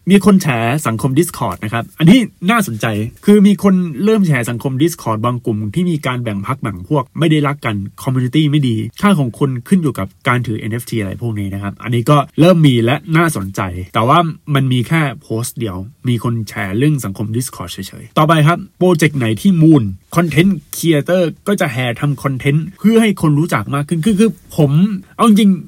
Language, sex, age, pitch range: Thai, male, 20-39, 130-185 Hz